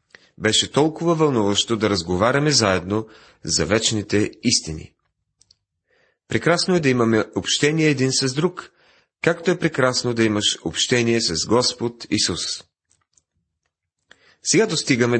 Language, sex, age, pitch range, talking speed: Bulgarian, male, 40-59, 90-130 Hz, 110 wpm